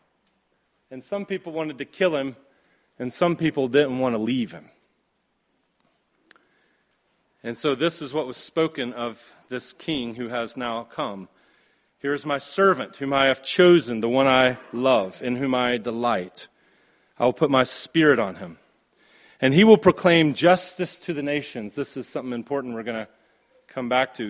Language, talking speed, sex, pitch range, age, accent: English, 175 wpm, male, 130-160 Hz, 40-59, American